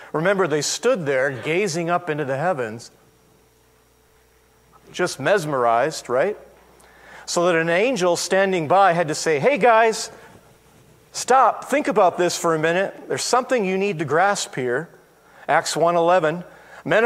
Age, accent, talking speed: 50-69, American, 145 wpm